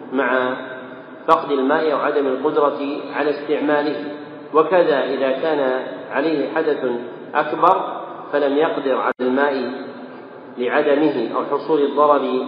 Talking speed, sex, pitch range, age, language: 100 wpm, male, 130-155 Hz, 40-59, Arabic